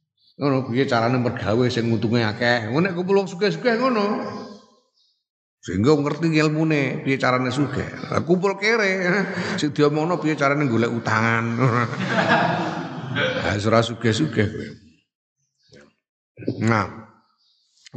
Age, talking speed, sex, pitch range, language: 50-69, 100 wpm, male, 115-180 Hz, Indonesian